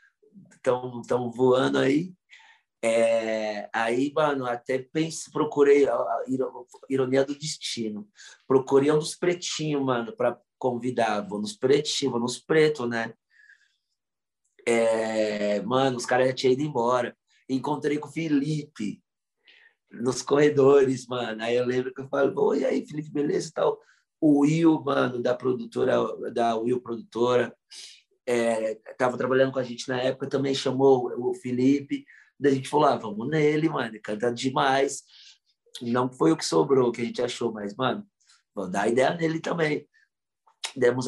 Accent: Brazilian